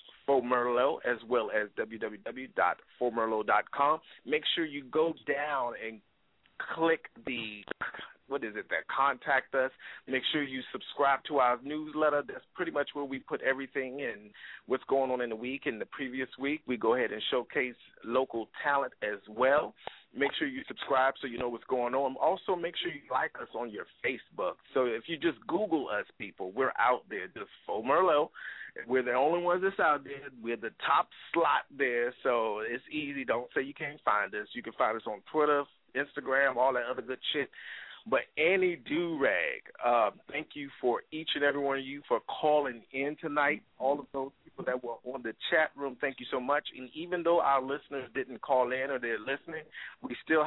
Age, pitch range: 40-59, 130-155 Hz